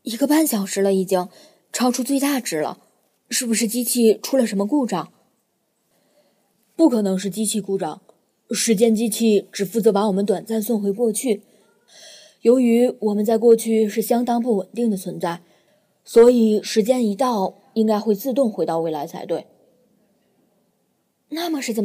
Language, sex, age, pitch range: Chinese, female, 20-39, 200-245 Hz